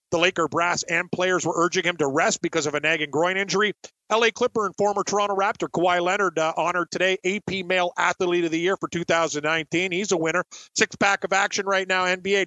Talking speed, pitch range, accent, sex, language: 215 wpm, 170-190 Hz, American, male, English